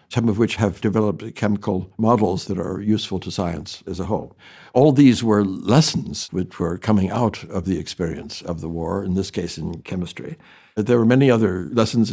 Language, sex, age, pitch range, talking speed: English, male, 60-79, 100-115 Hz, 195 wpm